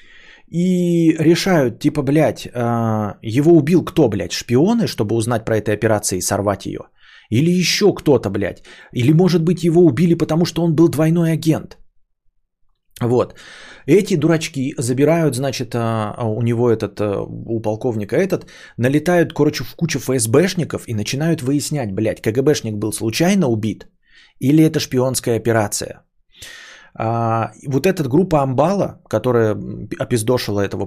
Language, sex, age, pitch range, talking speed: Bulgarian, male, 20-39, 110-160 Hz, 130 wpm